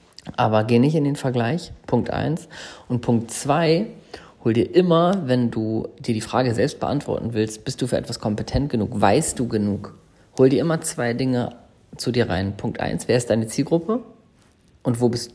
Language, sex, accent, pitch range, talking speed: German, male, German, 110-135 Hz, 190 wpm